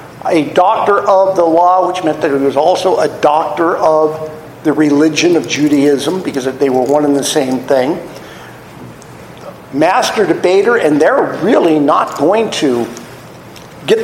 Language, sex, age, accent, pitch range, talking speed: English, male, 50-69, American, 145-205 Hz, 150 wpm